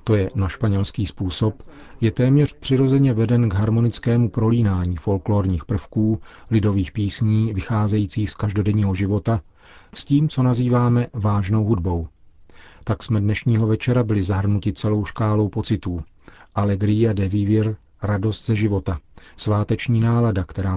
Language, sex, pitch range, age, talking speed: Czech, male, 95-115 Hz, 40-59, 125 wpm